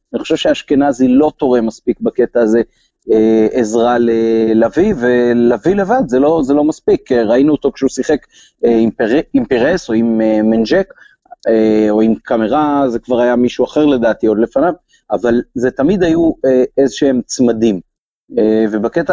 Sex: male